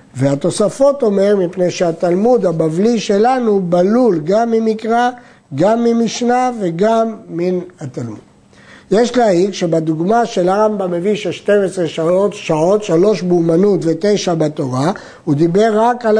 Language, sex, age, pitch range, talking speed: Hebrew, male, 60-79, 160-215 Hz, 120 wpm